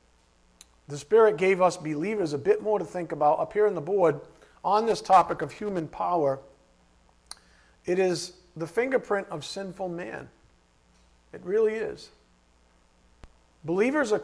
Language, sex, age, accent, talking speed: English, male, 50-69, American, 145 wpm